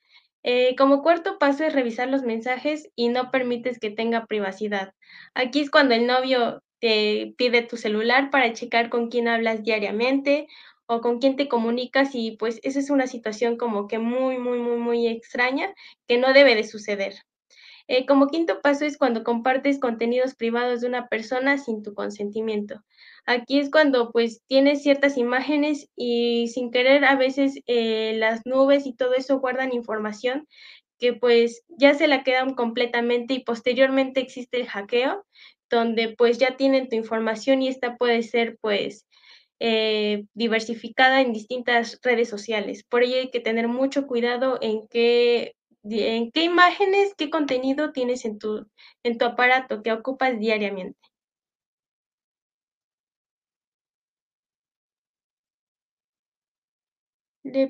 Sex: female